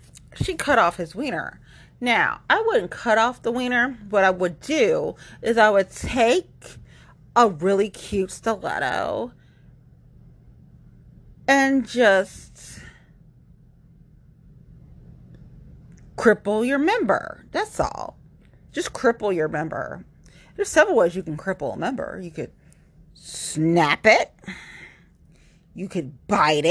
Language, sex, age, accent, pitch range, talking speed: English, female, 40-59, American, 150-225 Hz, 110 wpm